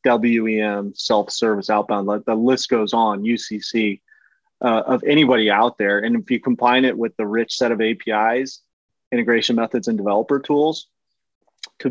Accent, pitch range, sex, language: American, 105-120 Hz, male, English